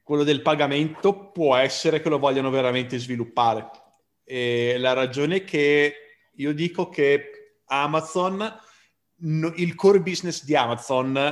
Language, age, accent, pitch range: Italian, 30-49, native, 115-160 Hz